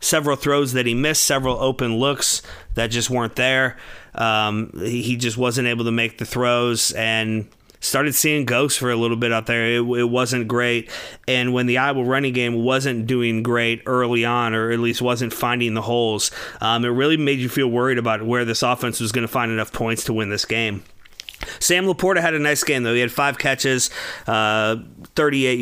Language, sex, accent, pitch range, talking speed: English, male, American, 115-135 Hz, 205 wpm